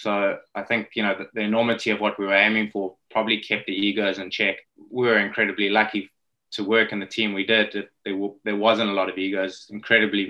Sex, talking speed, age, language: male, 215 wpm, 20-39, English